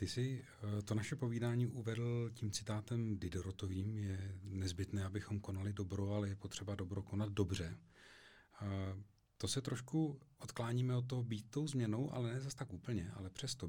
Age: 40-59